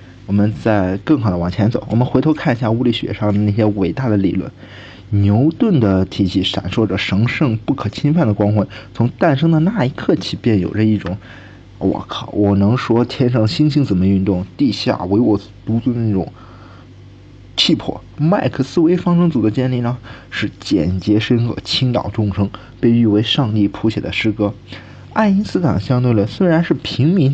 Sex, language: male, Chinese